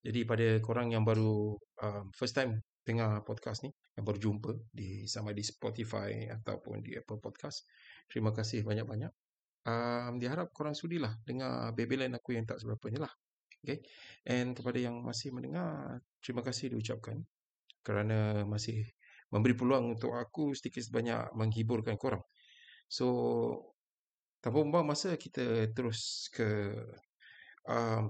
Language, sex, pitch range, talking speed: Malay, male, 105-125 Hz, 130 wpm